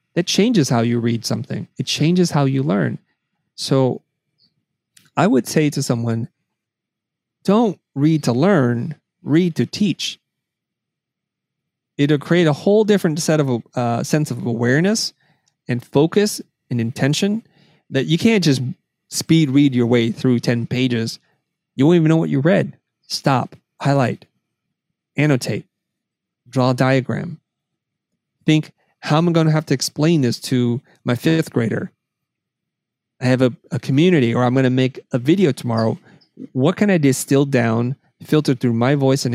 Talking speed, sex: 150 wpm, male